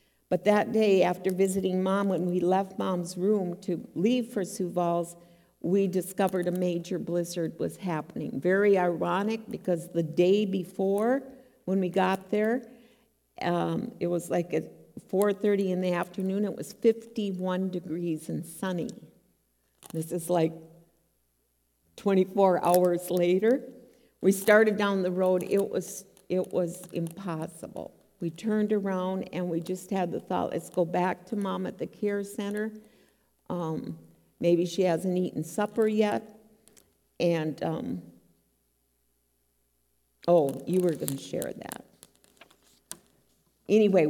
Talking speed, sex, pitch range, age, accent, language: 135 wpm, female, 170-200 Hz, 50-69, American, English